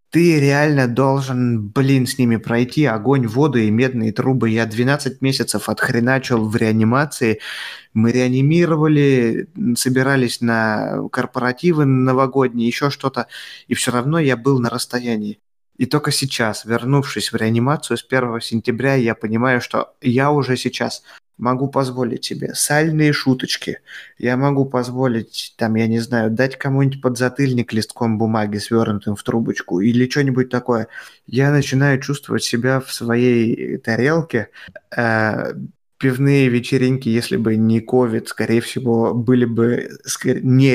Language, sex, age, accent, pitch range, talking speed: Russian, male, 20-39, native, 115-135 Hz, 130 wpm